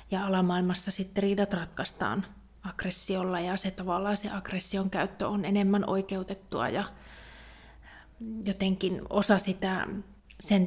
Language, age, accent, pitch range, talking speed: Finnish, 30-49, native, 185-205 Hz, 110 wpm